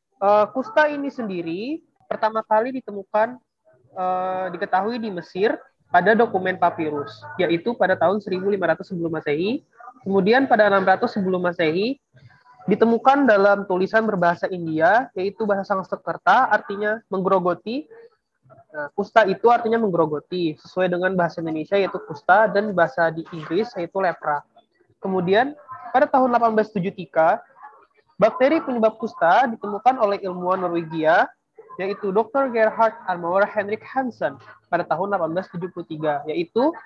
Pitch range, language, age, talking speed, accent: 175-230 Hz, Indonesian, 20-39, 120 wpm, native